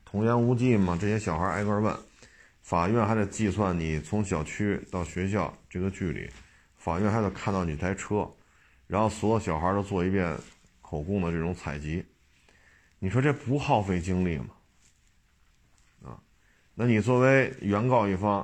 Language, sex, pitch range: Chinese, male, 80-105 Hz